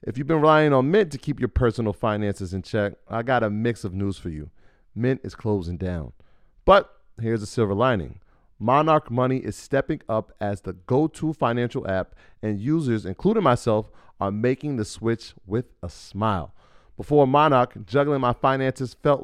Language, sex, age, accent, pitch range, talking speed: English, male, 30-49, American, 100-145 Hz, 180 wpm